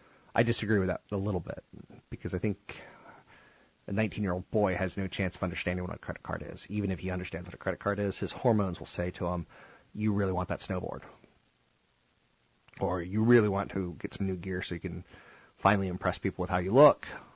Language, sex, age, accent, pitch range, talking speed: English, male, 30-49, American, 90-115 Hz, 215 wpm